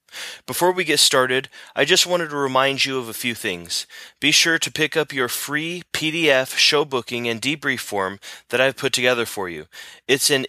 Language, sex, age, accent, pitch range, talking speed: English, male, 30-49, American, 115-145 Hz, 200 wpm